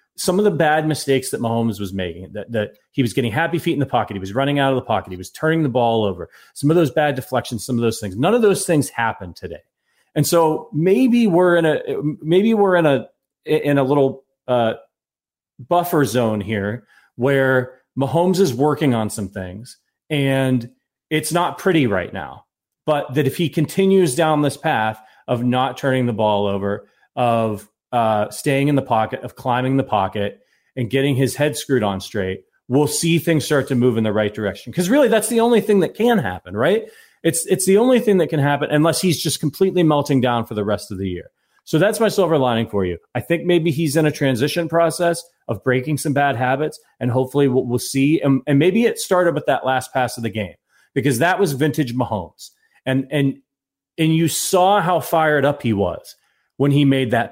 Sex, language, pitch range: male, English, 120-165 Hz